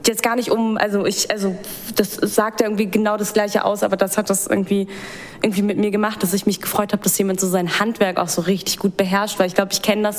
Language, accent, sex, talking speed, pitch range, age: German, German, female, 265 wpm, 190-210 Hz, 20-39